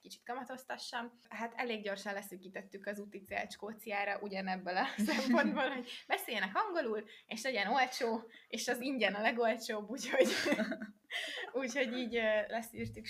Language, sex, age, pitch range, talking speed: Hungarian, female, 20-39, 210-255 Hz, 125 wpm